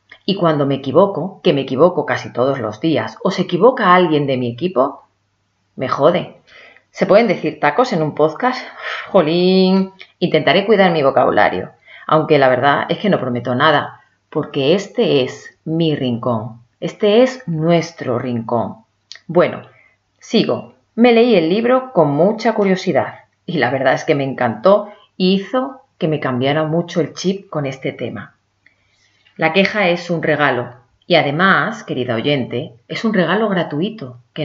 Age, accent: 30-49, Spanish